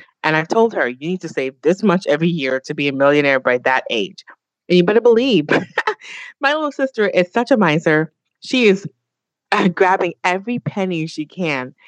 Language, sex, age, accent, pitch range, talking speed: English, female, 30-49, American, 140-185 Hz, 190 wpm